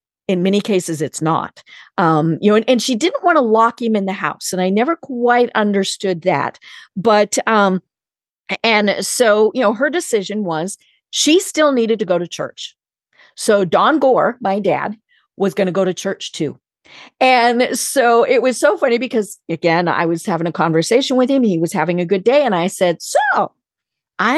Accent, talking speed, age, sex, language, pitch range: American, 195 wpm, 50-69, female, English, 190-275 Hz